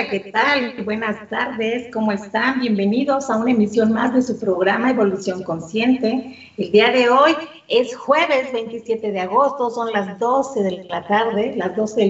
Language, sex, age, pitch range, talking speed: Spanish, female, 40-59, 215-265 Hz, 170 wpm